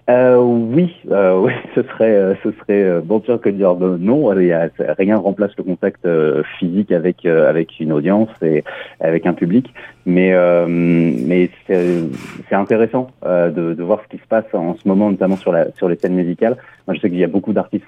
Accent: French